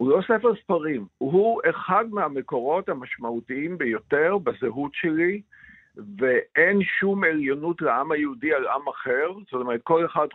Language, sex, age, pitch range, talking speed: Hebrew, male, 50-69, 140-210 Hz, 135 wpm